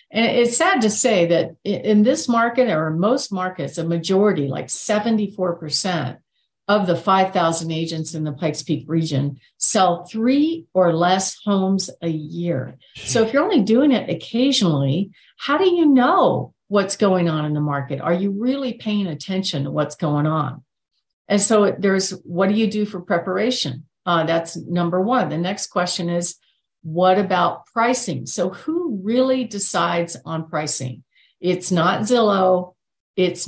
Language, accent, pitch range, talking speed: English, American, 170-220 Hz, 160 wpm